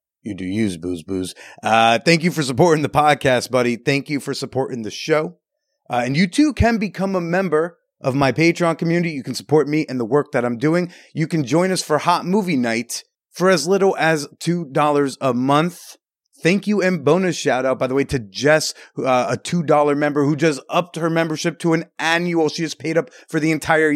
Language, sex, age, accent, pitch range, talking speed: English, male, 30-49, American, 130-165 Hz, 215 wpm